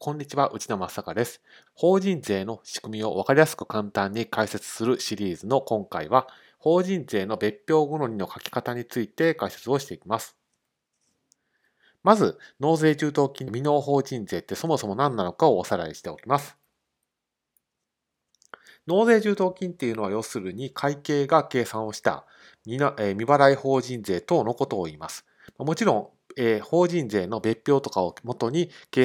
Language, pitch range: Japanese, 110-155 Hz